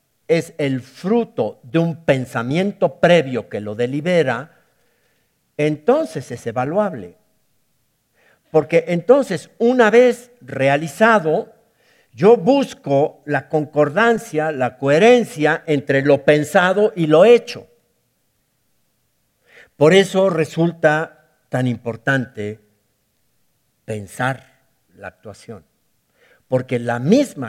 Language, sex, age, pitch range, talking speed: Spanish, male, 60-79, 125-170 Hz, 90 wpm